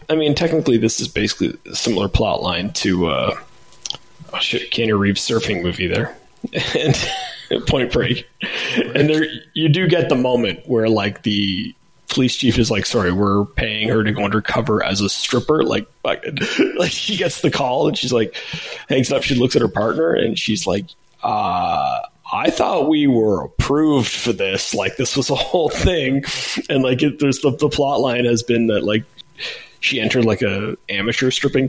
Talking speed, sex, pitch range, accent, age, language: 185 wpm, male, 110-140 Hz, American, 30-49, English